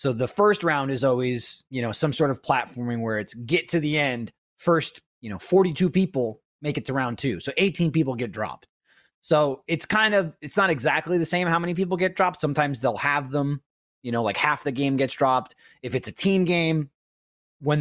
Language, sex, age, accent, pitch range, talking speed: English, male, 30-49, American, 120-160 Hz, 220 wpm